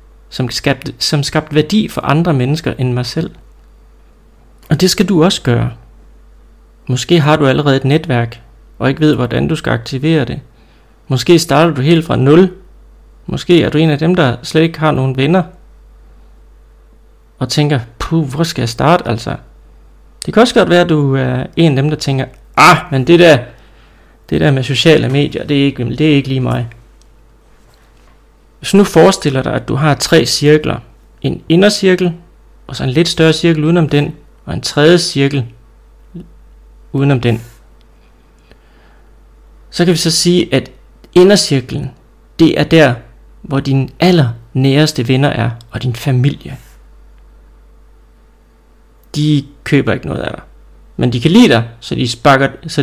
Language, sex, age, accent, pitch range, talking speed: Danish, male, 30-49, native, 120-160 Hz, 160 wpm